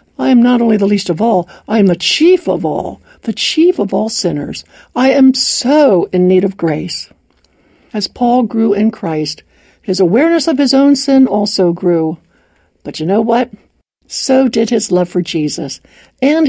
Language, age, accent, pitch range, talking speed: English, 60-79, American, 185-265 Hz, 180 wpm